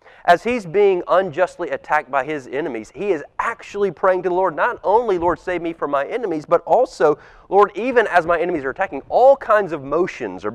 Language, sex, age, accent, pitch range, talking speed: English, male, 30-49, American, 160-200 Hz, 210 wpm